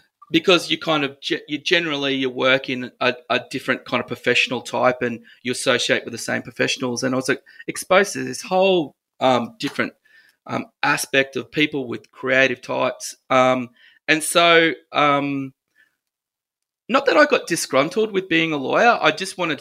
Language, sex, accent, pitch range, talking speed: English, male, Australian, 125-150 Hz, 170 wpm